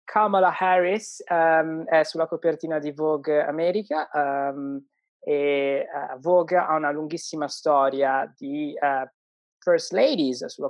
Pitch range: 140-200 Hz